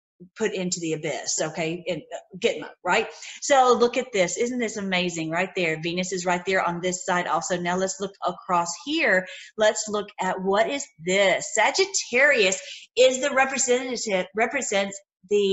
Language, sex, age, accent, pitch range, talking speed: English, female, 40-59, American, 175-225 Hz, 165 wpm